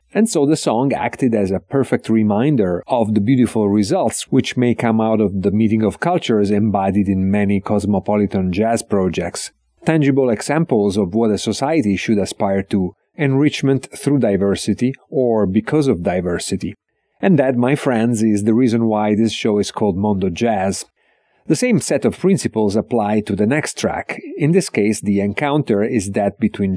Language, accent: English, Italian